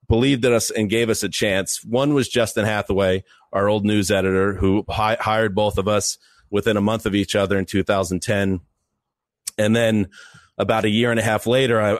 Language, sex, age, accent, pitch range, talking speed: English, male, 30-49, American, 100-125 Hz, 200 wpm